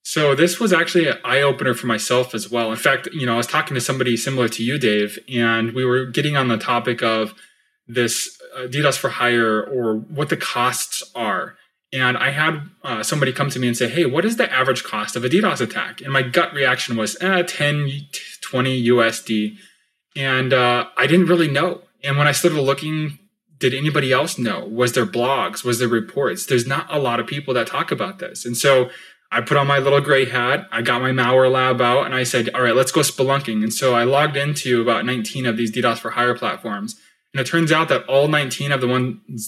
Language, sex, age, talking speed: English, male, 20-39, 220 wpm